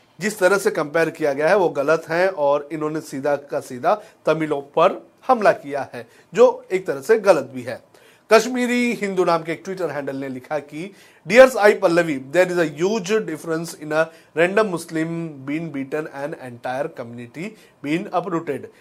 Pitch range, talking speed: 150-195 Hz, 175 wpm